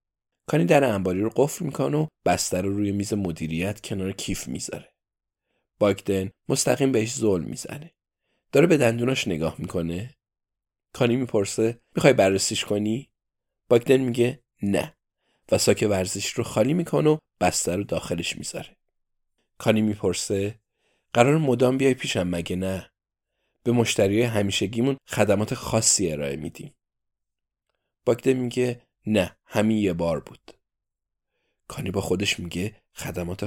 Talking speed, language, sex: 125 wpm, Persian, male